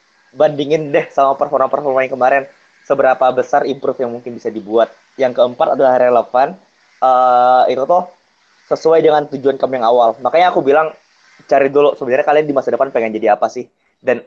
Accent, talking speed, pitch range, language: native, 175 wpm, 115-150 Hz, Indonesian